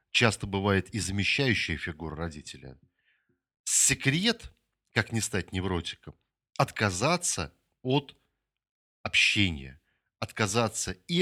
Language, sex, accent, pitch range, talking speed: Russian, male, native, 90-115 Hz, 85 wpm